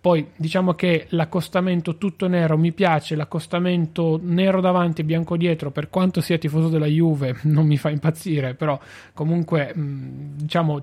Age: 30-49